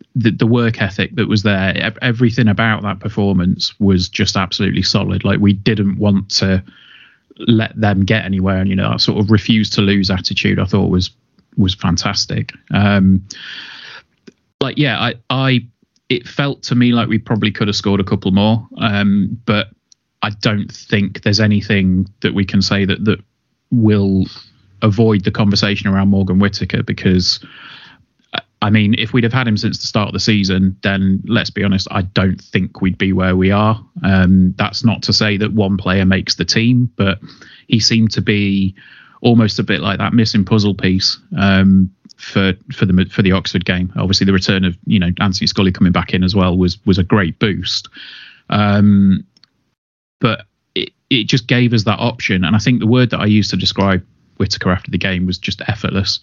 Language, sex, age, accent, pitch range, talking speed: English, male, 20-39, British, 95-115 Hz, 190 wpm